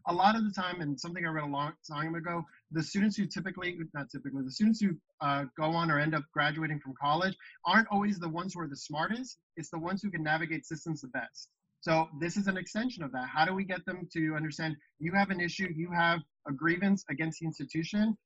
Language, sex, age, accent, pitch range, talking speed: English, male, 30-49, American, 150-180 Hz, 240 wpm